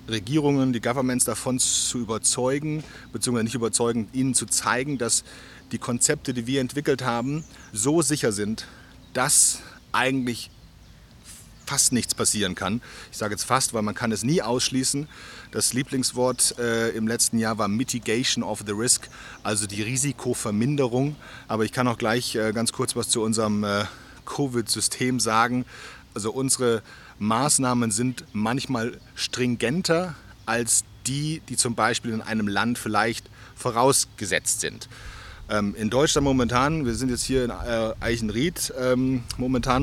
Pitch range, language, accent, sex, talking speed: 110-130 Hz, German, German, male, 140 wpm